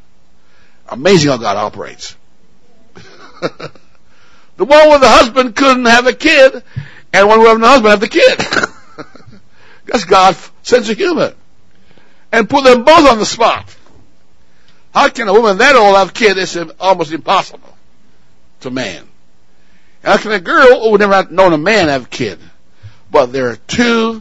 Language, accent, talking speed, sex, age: English, American, 160 wpm, male, 60-79